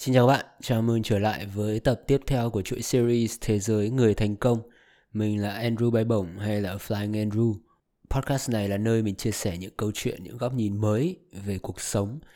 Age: 20-39